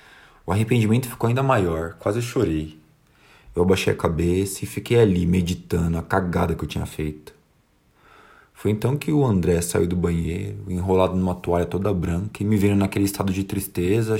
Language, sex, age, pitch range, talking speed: Portuguese, male, 20-39, 85-100 Hz, 175 wpm